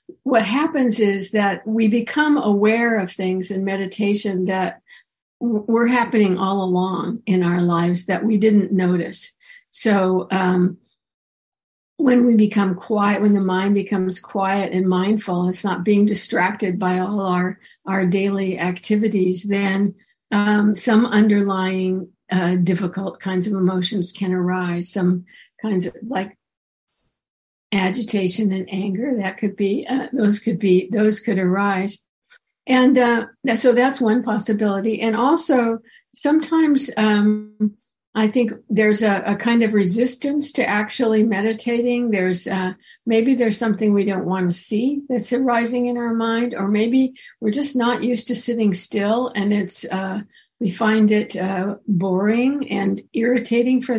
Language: English